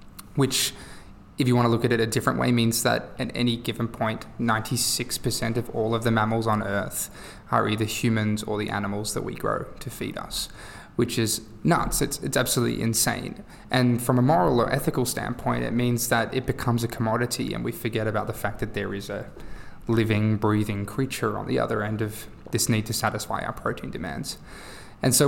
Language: English